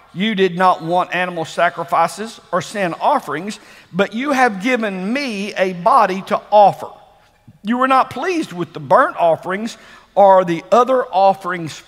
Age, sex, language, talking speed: 50-69, male, English, 150 wpm